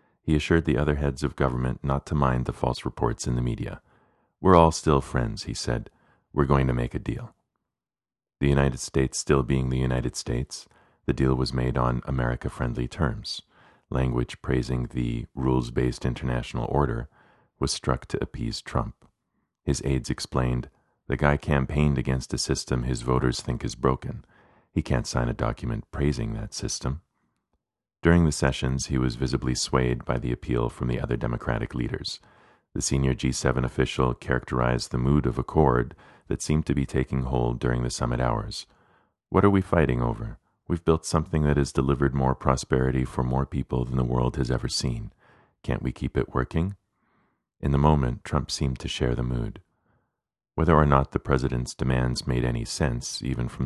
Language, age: English, 40-59